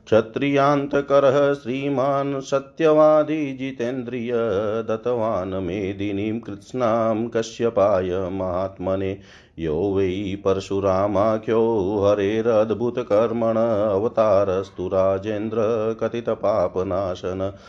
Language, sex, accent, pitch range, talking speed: Hindi, male, native, 100-130 Hz, 45 wpm